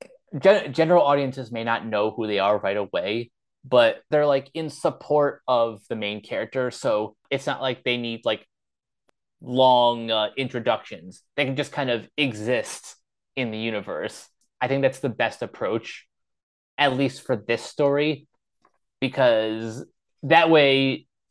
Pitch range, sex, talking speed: 115-140 Hz, male, 145 wpm